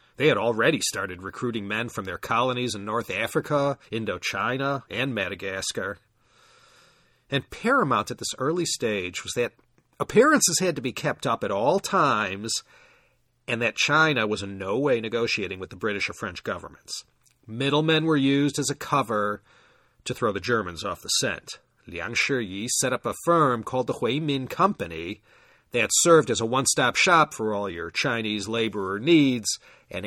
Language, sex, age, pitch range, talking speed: English, male, 40-59, 110-155 Hz, 165 wpm